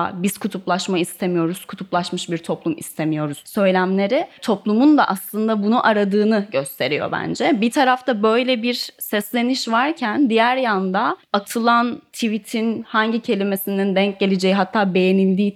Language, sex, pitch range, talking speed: Turkish, female, 190-235 Hz, 120 wpm